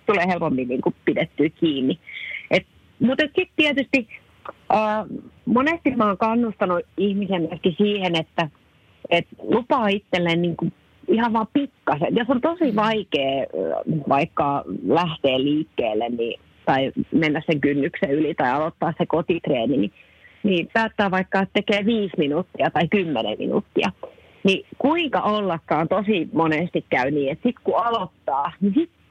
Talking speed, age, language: 135 wpm, 40-59, Finnish